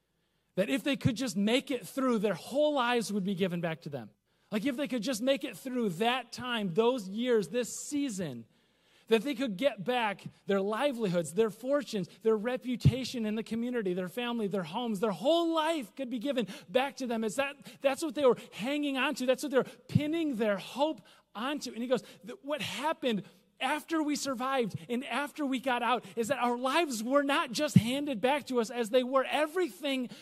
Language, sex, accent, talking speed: English, male, American, 205 wpm